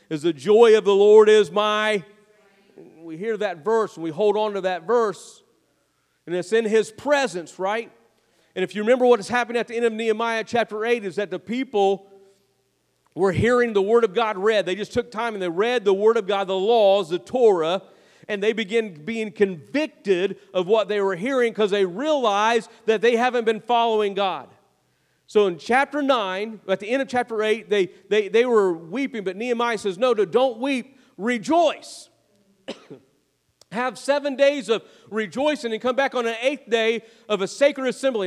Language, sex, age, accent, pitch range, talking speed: English, male, 40-59, American, 200-240 Hz, 190 wpm